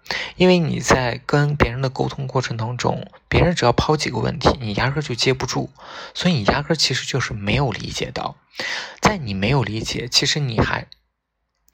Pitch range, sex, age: 120-165 Hz, male, 20-39